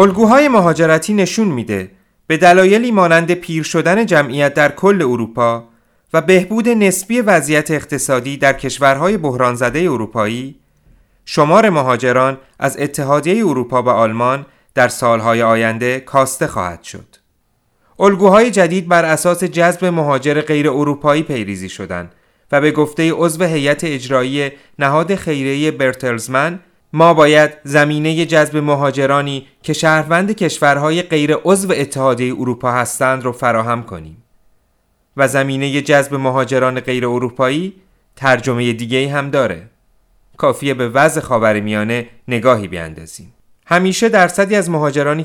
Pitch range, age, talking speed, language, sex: 125-165 Hz, 30-49, 120 wpm, Persian, male